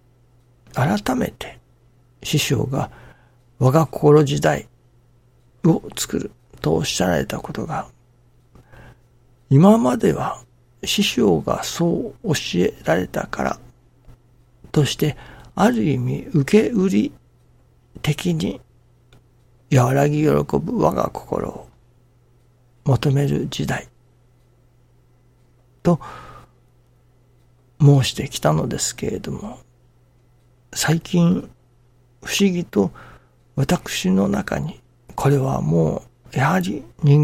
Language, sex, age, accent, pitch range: Japanese, male, 60-79, native, 120-135 Hz